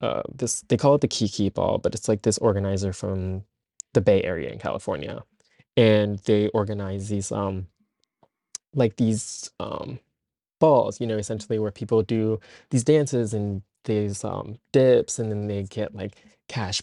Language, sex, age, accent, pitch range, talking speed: English, male, 20-39, American, 105-130 Hz, 165 wpm